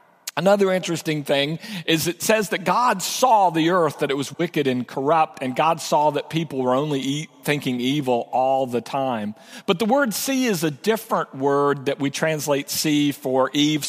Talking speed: 185 wpm